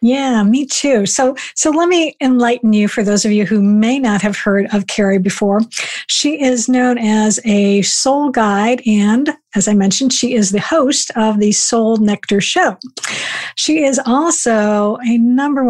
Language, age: English, 50-69